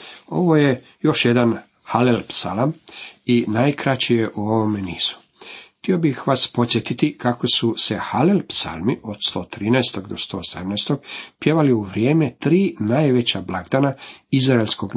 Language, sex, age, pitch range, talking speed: Croatian, male, 50-69, 110-140 Hz, 130 wpm